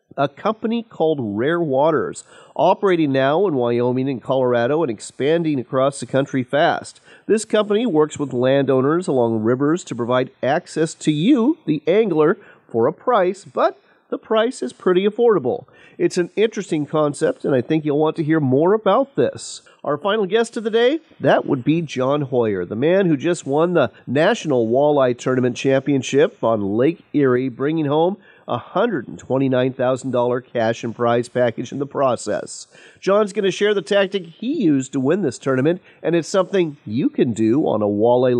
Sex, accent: male, American